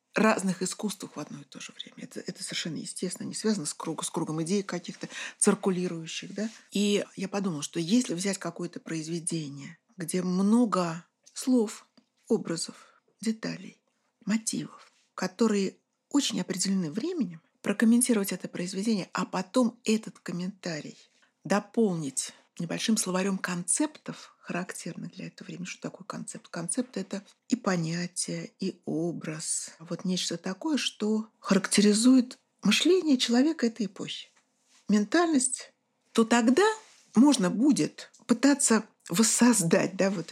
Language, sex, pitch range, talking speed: Russian, female, 185-240 Hz, 120 wpm